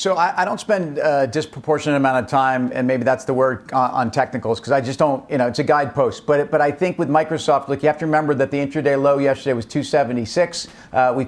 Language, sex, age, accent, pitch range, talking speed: English, male, 50-69, American, 130-155 Hz, 250 wpm